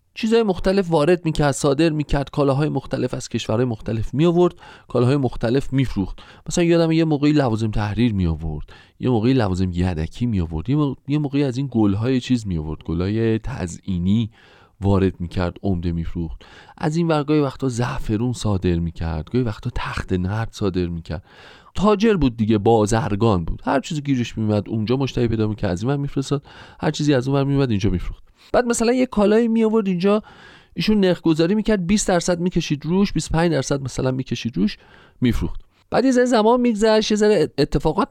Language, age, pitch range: Persian, 30-49, 100-165 Hz